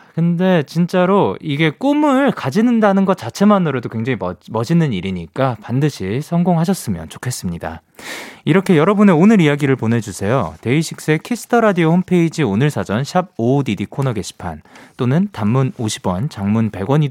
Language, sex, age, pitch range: Korean, male, 30-49, 110-185 Hz